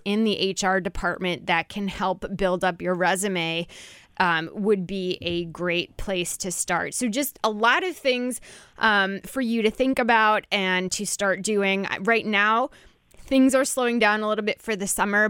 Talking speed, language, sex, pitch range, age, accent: 185 wpm, English, female, 185-235 Hz, 20-39, American